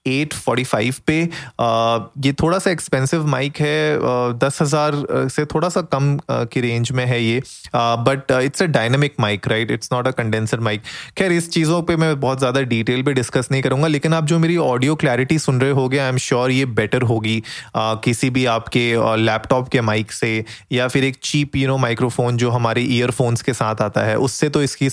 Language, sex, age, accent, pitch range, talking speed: Hindi, male, 20-39, native, 120-145 Hz, 210 wpm